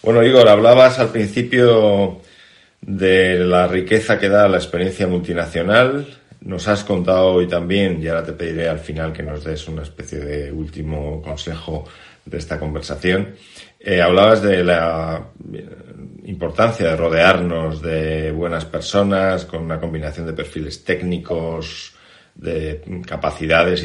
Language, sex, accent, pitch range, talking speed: Spanish, male, Spanish, 80-95 Hz, 135 wpm